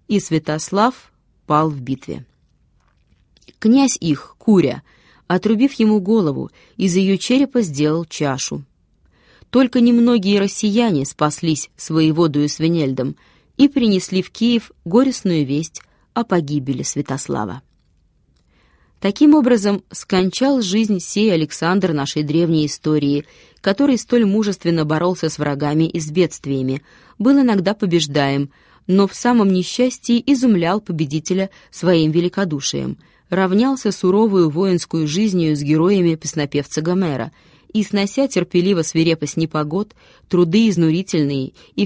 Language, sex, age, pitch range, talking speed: Russian, female, 20-39, 155-215 Hz, 110 wpm